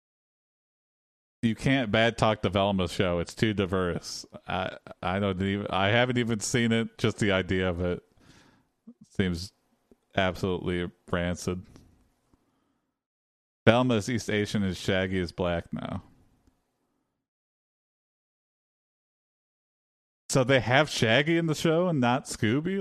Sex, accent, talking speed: male, American, 120 wpm